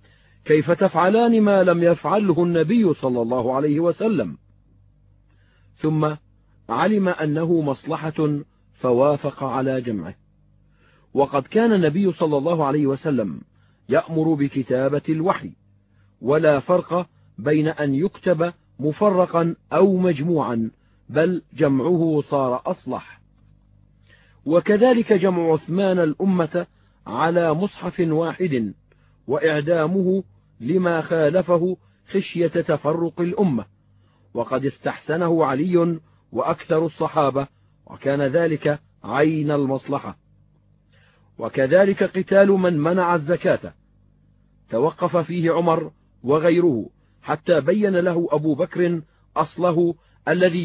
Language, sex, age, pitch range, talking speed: Arabic, male, 40-59, 130-175 Hz, 90 wpm